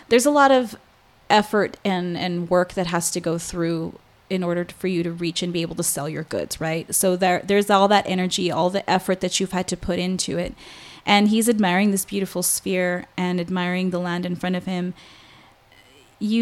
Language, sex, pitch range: English, female, 180-210 Hz